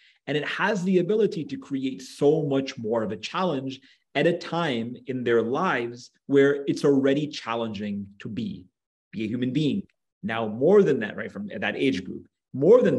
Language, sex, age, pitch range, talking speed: English, male, 30-49, 110-145 Hz, 185 wpm